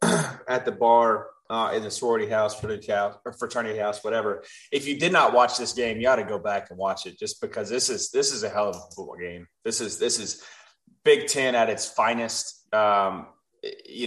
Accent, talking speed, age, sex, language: American, 225 wpm, 20-39, male, English